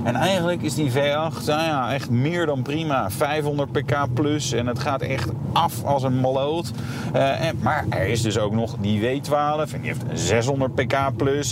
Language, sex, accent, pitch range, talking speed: Dutch, male, Dutch, 115-145 Hz, 195 wpm